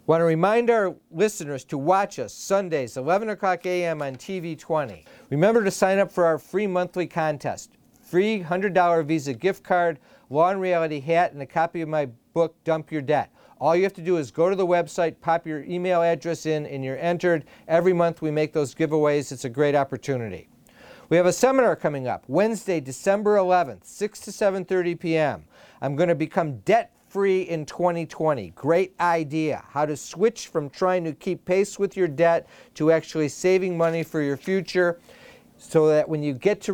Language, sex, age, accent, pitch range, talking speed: English, male, 50-69, American, 150-185 Hz, 190 wpm